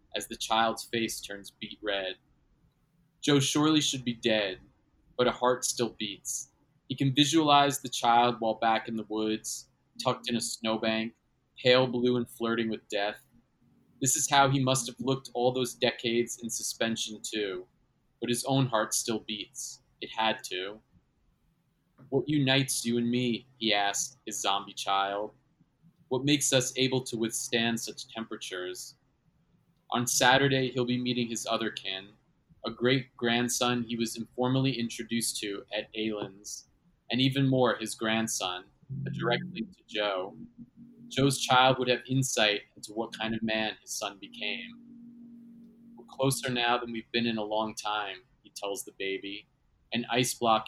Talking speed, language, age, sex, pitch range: 155 wpm, English, 30-49, male, 110-135 Hz